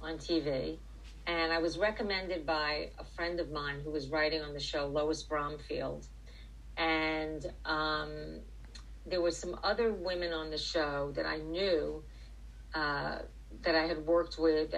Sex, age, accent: female, 40-59, American